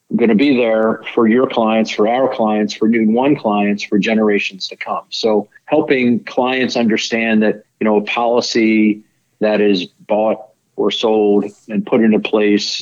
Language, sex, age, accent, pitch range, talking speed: English, male, 40-59, American, 105-120 Hz, 165 wpm